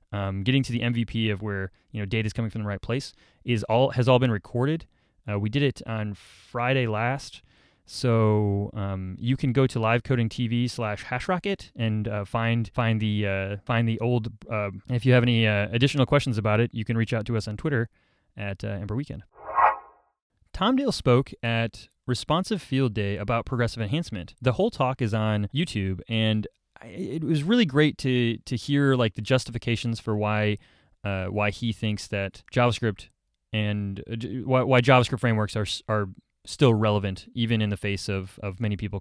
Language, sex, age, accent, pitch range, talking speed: English, male, 20-39, American, 105-130 Hz, 190 wpm